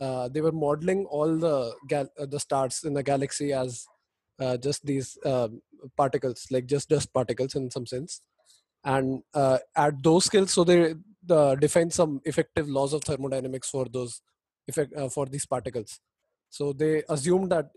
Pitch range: 135-160 Hz